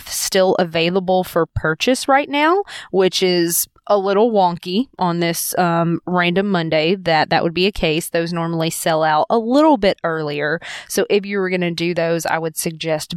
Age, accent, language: 20-39, American, English